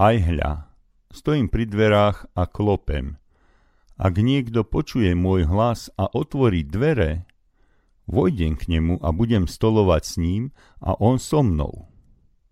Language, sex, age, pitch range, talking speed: Slovak, male, 50-69, 85-115 Hz, 130 wpm